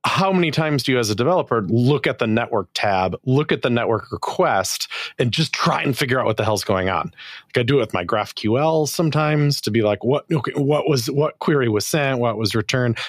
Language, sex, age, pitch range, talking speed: English, male, 30-49, 105-145 Hz, 235 wpm